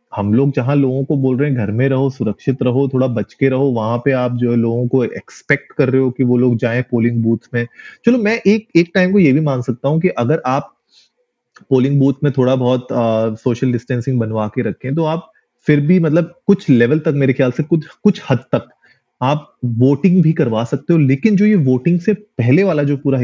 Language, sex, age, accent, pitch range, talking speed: Hindi, male, 30-49, native, 125-160 Hz, 230 wpm